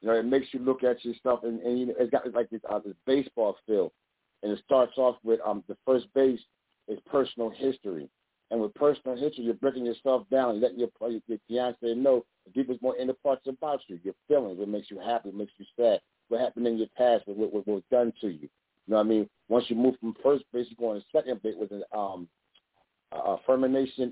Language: English